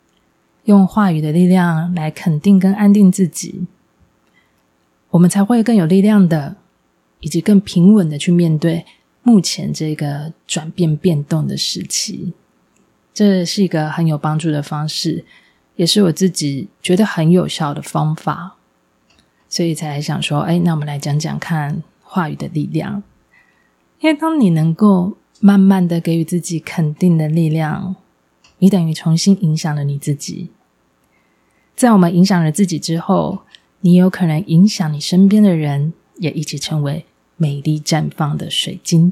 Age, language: 20-39, Chinese